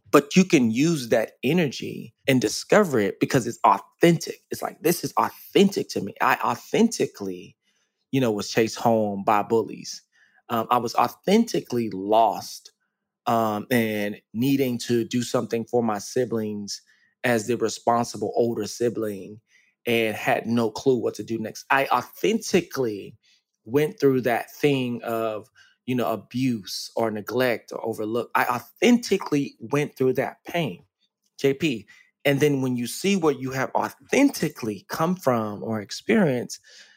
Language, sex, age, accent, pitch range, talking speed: English, male, 20-39, American, 115-145 Hz, 145 wpm